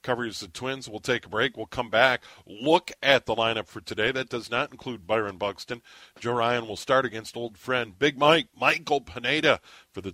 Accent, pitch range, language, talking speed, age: American, 110-135 Hz, English, 205 wpm, 40-59